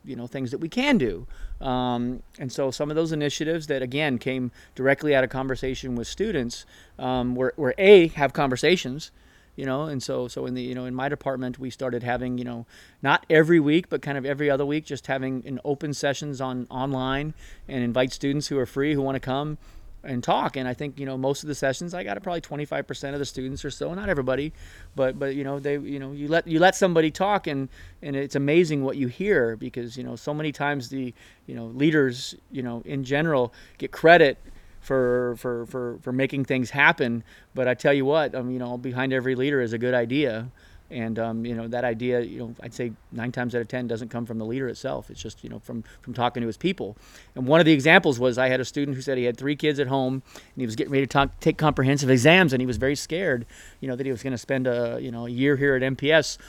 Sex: male